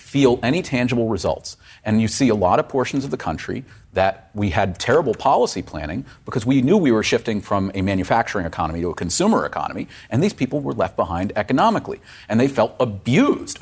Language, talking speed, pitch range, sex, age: English, 200 wpm, 95-120 Hz, male, 40-59